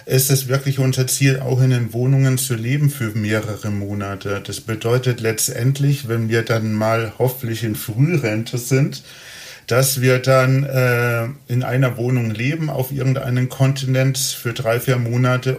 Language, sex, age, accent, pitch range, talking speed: German, male, 40-59, German, 115-135 Hz, 155 wpm